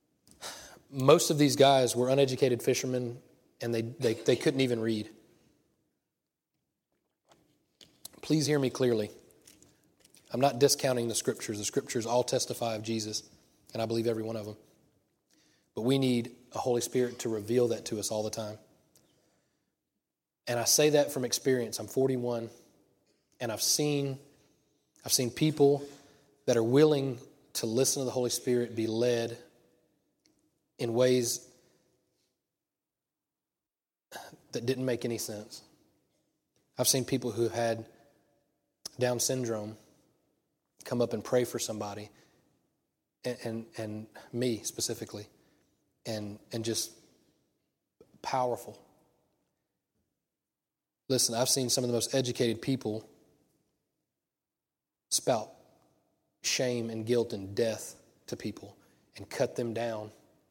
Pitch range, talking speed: 115-135 Hz, 125 wpm